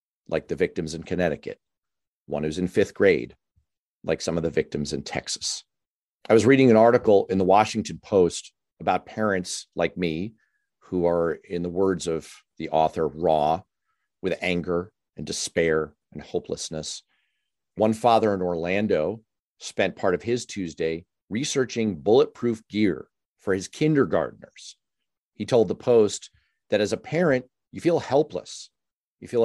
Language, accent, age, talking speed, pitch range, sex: English, American, 40-59, 150 wpm, 95-135 Hz, male